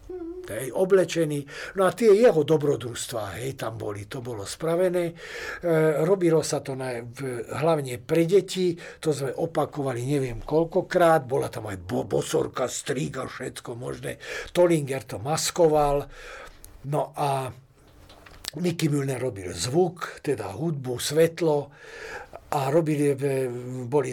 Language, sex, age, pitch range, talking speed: Slovak, male, 60-79, 135-165 Hz, 120 wpm